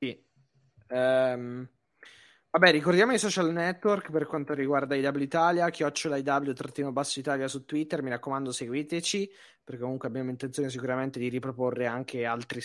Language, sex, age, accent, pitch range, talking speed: Italian, male, 20-39, native, 125-155 Hz, 140 wpm